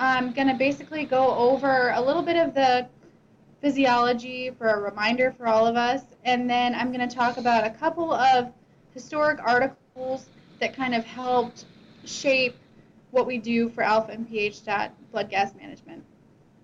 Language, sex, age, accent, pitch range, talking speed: English, female, 10-29, American, 220-260 Hz, 170 wpm